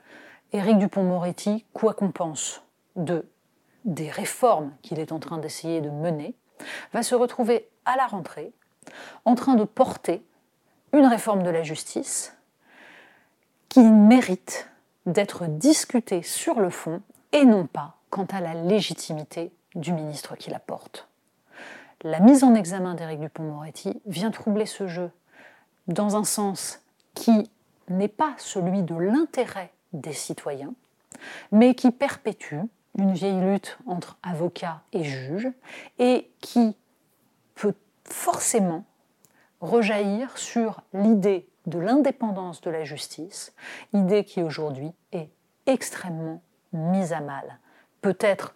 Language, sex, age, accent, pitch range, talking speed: French, female, 30-49, French, 170-225 Hz, 125 wpm